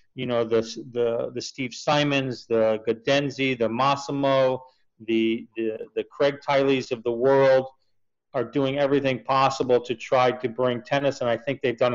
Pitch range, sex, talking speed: 125-145 Hz, male, 170 wpm